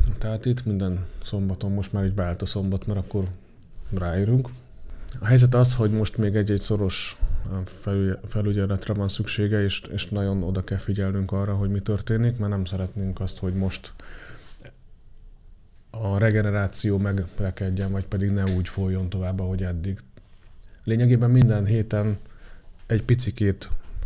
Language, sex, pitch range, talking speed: Hungarian, male, 95-110 Hz, 140 wpm